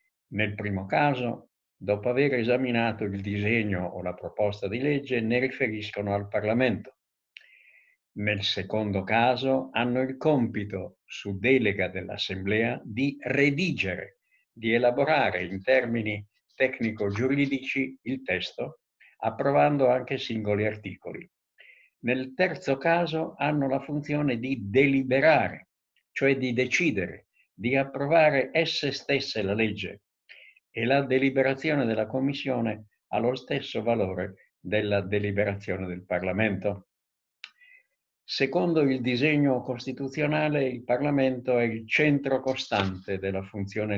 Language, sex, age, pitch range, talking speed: Italian, male, 60-79, 105-135 Hz, 110 wpm